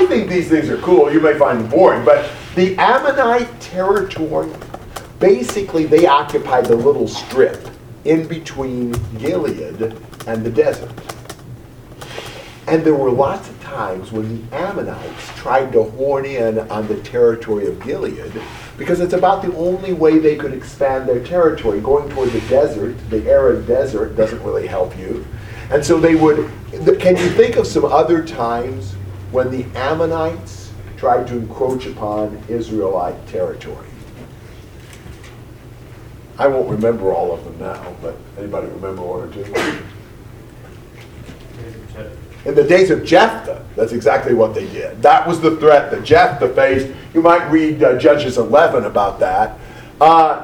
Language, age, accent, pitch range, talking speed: English, 50-69, American, 115-175 Hz, 150 wpm